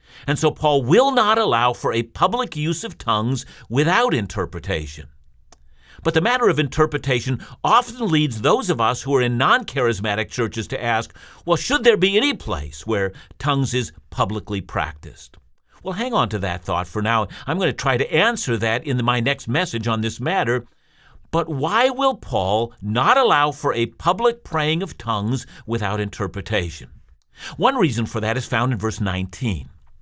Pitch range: 110-165 Hz